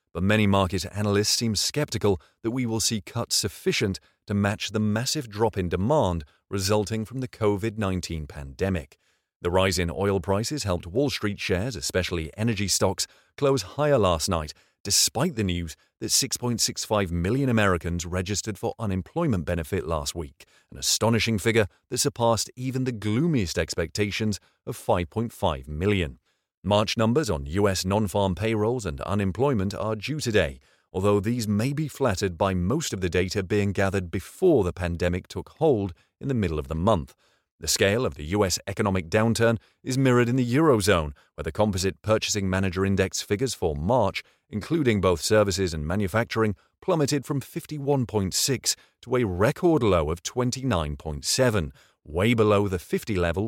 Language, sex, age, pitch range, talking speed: English, male, 30-49, 90-115 Hz, 155 wpm